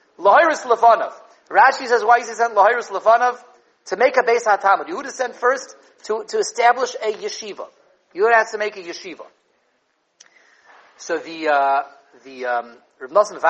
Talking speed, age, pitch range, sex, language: 160 wpm, 40-59, 200-255 Hz, male, English